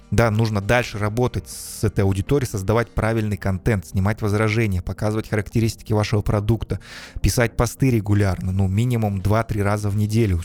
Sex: male